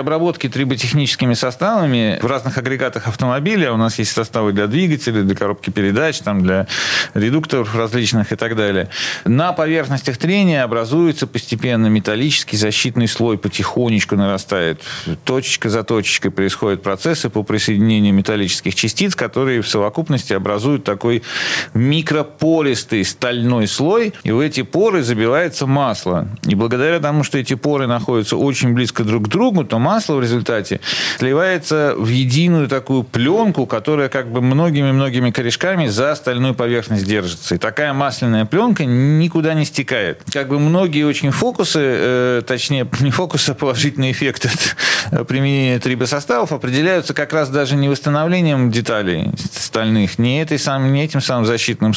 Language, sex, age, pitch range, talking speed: Russian, male, 40-59, 115-145 Hz, 140 wpm